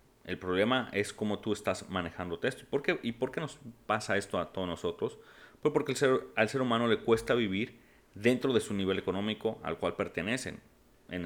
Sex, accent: male, Mexican